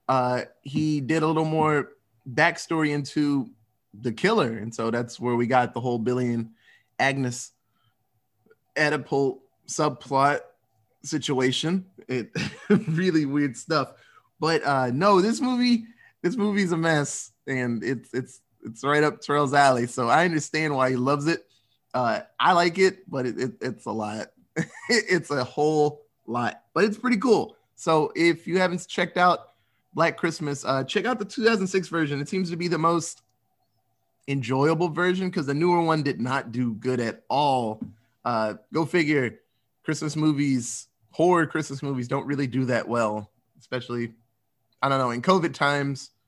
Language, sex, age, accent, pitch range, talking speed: English, male, 20-39, American, 125-170 Hz, 160 wpm